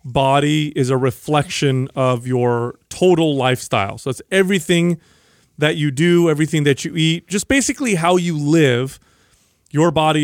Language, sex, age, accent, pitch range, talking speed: English, male, 30-49, American, 135-175 Hz, 145 wpm